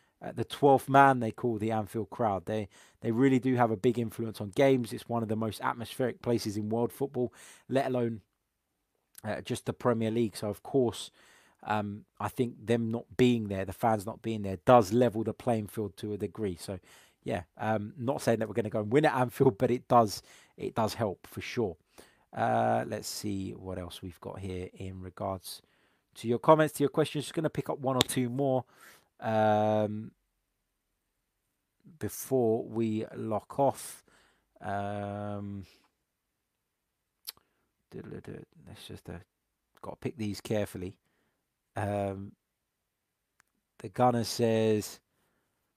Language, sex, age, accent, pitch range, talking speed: English, male, 20-39, British, 105-125 Hz, 155 wpm